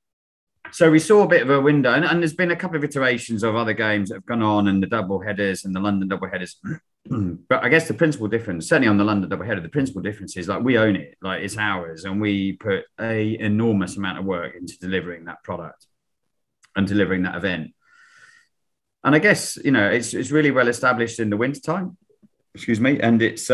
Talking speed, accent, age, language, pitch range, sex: 225 wpm, British, 30-49, English, 95-120 Hz, male